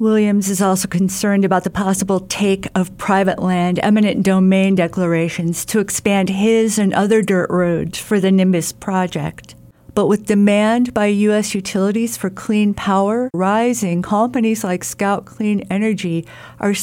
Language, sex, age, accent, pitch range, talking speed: English, female, 50-69, American, 175-205 Hz, 145 wpm